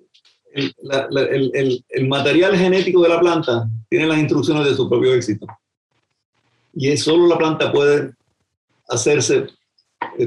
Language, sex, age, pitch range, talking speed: English, male, 50-69, 115-155 Hz, 145 wpm